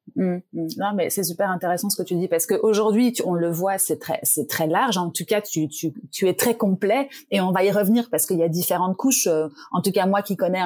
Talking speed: 260 wpm